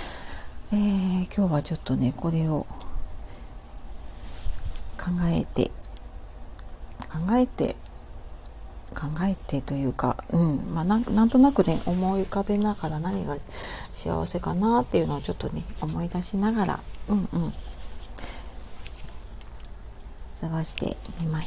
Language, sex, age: Japanese, female, 50-69